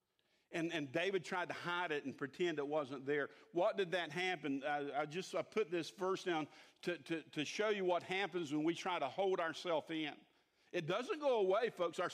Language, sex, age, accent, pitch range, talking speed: English, male, 50-69, American, 170-275 Hz, 215 wpm